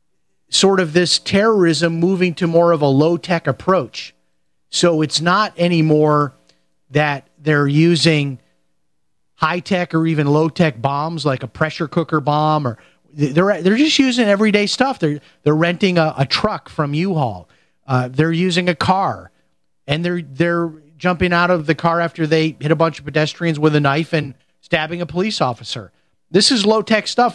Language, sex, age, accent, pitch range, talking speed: English, male, 40-59, American, 125-170 Hz, 175 wpm